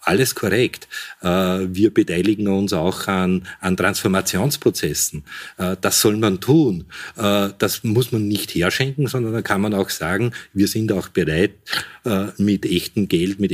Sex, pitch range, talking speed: male, 90-110 Hz, 135 wpm